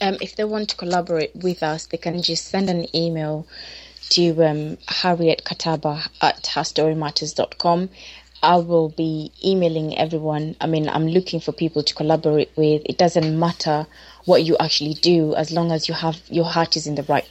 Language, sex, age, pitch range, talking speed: English, female, 20-39, 155-175 Hz, 180 wpm